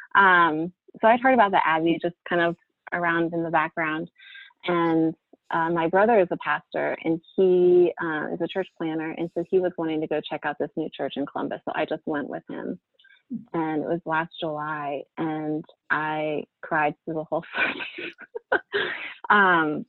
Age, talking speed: 20-39, 185 wpm